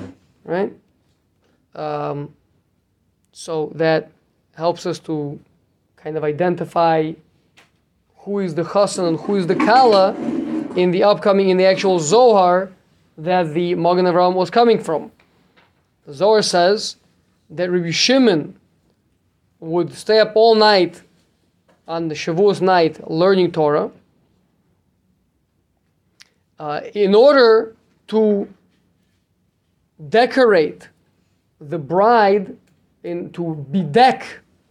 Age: 20-39